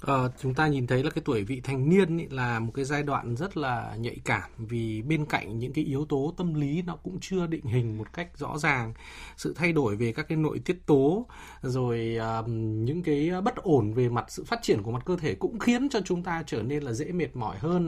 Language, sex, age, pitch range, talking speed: Vietnamese, male, 20-39, 130-200 Hz, 240 wpm